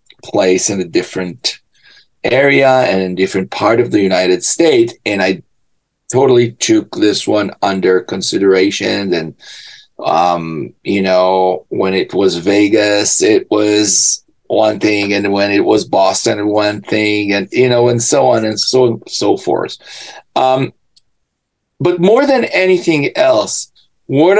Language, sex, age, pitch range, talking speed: English, male, 40-59, 105-155 Hz, 145 wpm